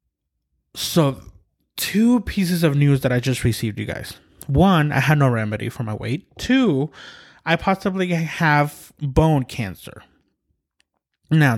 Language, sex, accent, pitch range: English, male, American, 120-155 Hz